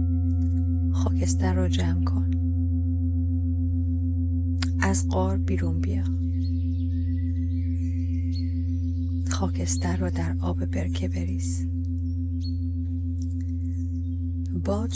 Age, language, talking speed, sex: 30-49, Persian, 60 wpm, female